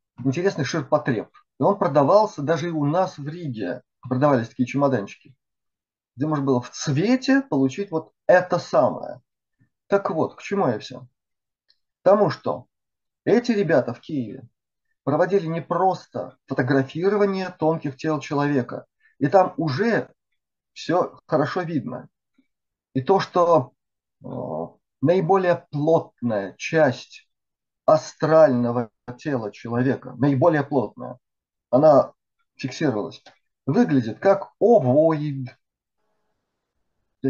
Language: Russian